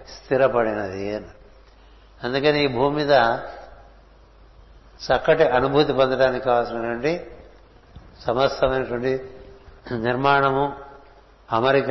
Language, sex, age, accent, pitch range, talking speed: Telugu, male, 60-79, native, 120-140 Hz, 65 wpm